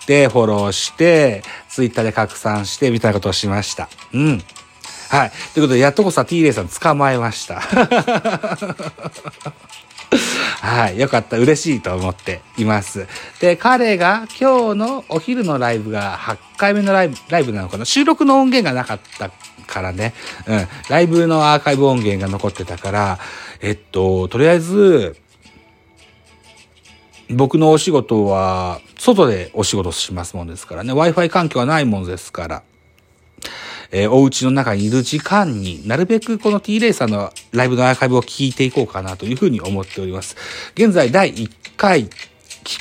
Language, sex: Japanese, male